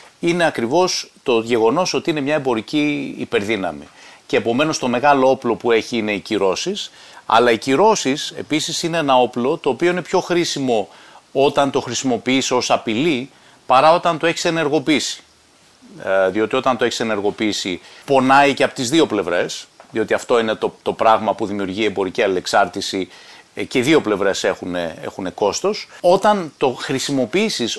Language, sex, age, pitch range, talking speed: Greek, male, 30-49, 115-170 Hz, 155 wpm